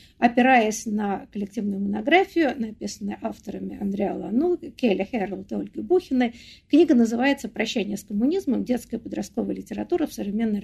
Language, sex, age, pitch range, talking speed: Russian, female, 60-79, 205-270 Hz, 135 wpm